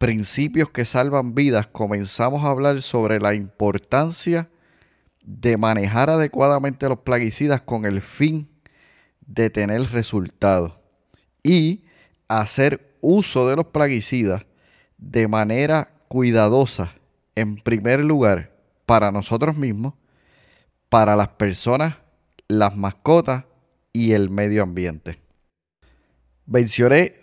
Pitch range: 105-140 Hz